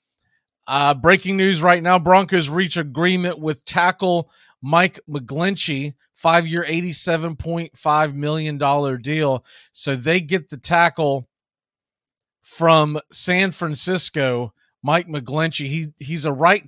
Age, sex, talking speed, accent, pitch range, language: 40-59, male, 105 wpm, American, 145-180 Hz, English